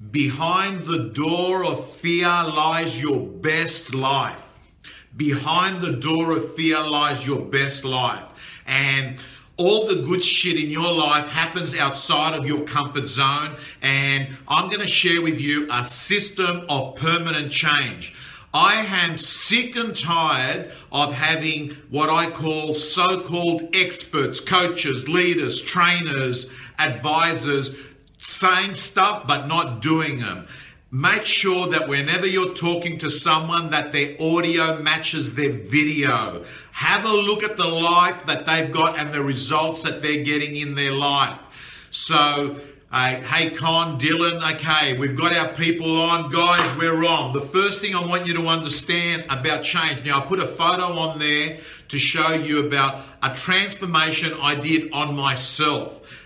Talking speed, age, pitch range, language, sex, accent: 150 wpm, 50-69, 145-170 Hz, English, male, Australian